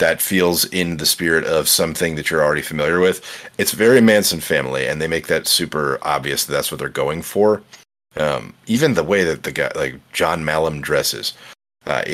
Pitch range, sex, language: 80-100 Hz, male, English